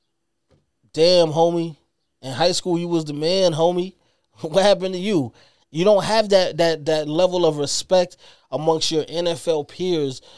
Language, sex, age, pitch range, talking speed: English, male, 20-39, 165-210 Hz, 155 wpm